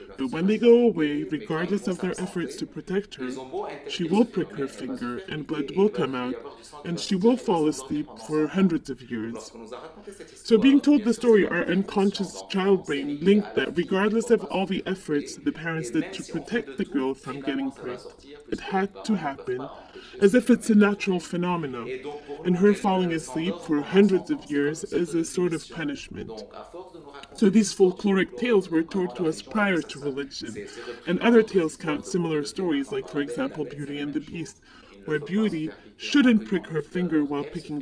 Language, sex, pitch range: English, female, 150-205 Hz